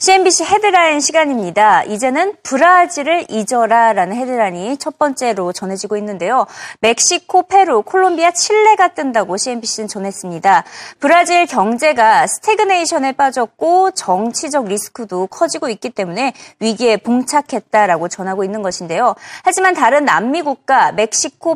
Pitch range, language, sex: 210-330 Hz, Korean, female